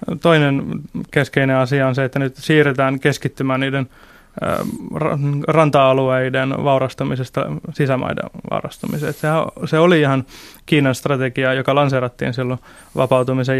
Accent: native